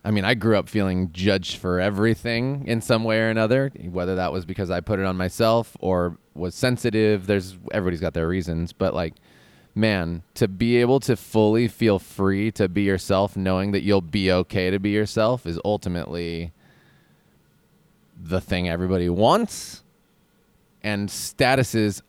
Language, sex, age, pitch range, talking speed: English, male, 20-39, 90-110 Hz, 165 wpm